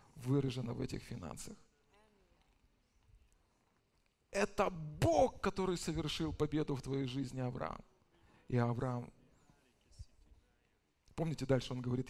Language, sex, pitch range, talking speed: Russian, male, 130-165 Hz, 95 wpm